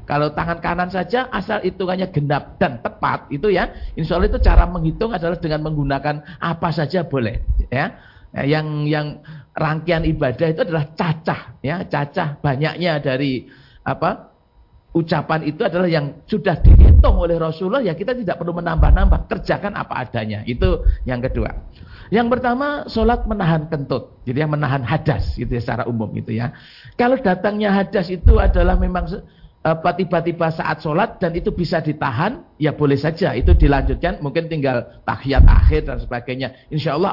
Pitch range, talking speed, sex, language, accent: 130-180 Hz, 155 wpm, male, Indonesian, native